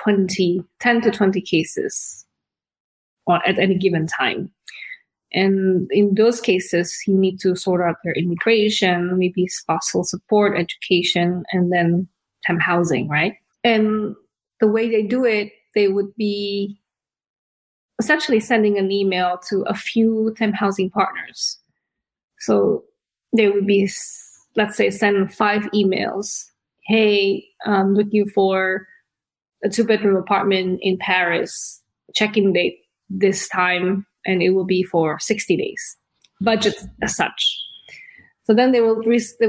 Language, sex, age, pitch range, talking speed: English, female, 20-39, 185-220 Hz, 135 wpm